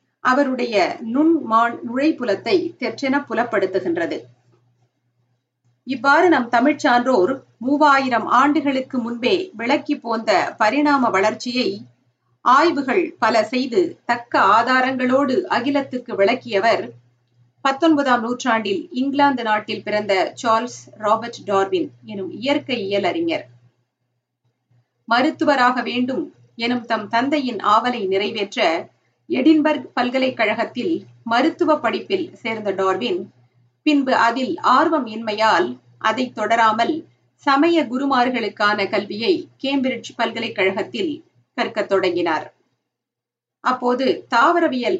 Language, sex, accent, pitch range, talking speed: Tamil, female, native, 200-280 Hz, 70 wpm